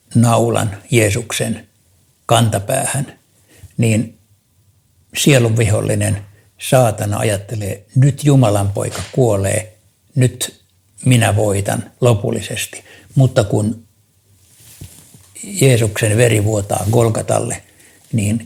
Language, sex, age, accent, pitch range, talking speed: Finnish, male, 60-79, native, 105-125 Hz, 70 wpm